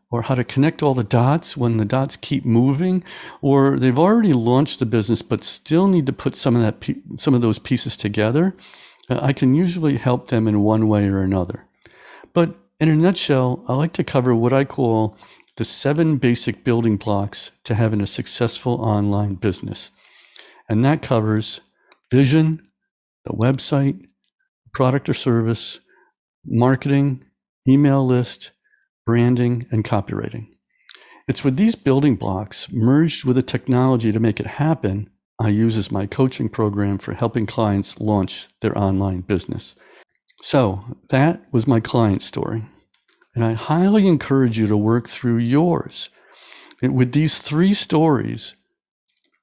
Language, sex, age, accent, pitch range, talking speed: English, male, 50-69, American, 110-140 Hz, 150 wpm